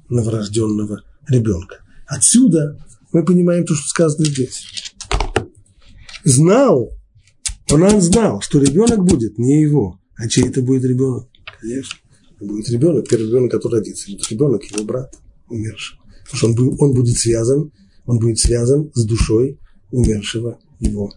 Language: Russian